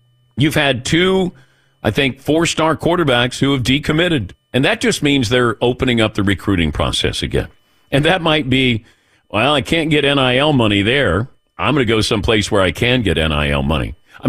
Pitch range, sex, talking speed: 105-150 Hz, male, 185 wpm